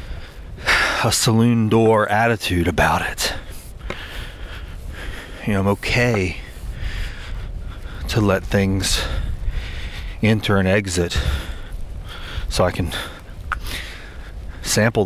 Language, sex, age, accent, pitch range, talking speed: English, male, 30-49, American, 85-105 Hz, 80 wpm